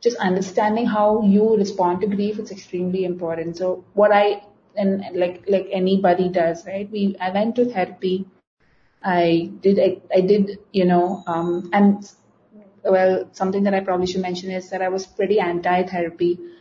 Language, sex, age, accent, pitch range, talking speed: Hindi, female, 30-49, native, 180-205 Hz, 170 wpm